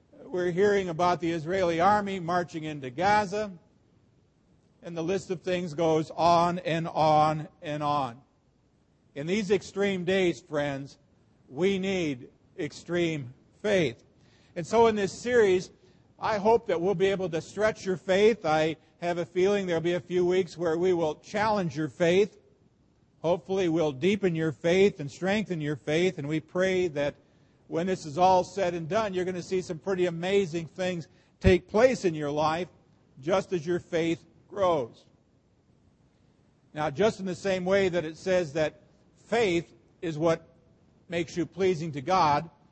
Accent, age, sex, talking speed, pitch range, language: American, 50-69, male, 160 wpm, 155-190 Hz, English